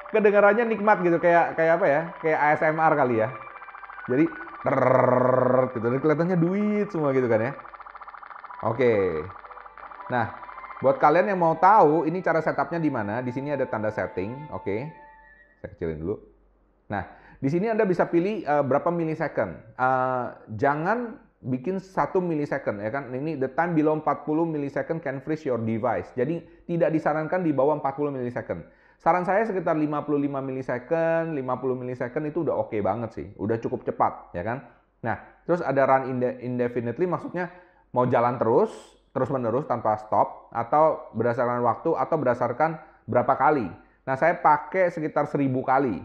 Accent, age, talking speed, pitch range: native, 30-49, 155 wpm, 125-165 Hz